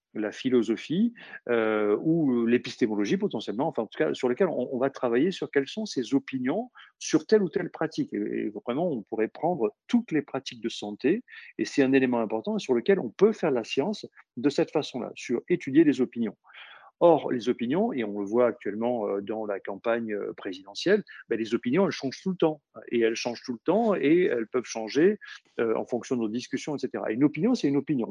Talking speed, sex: 205 wpm, male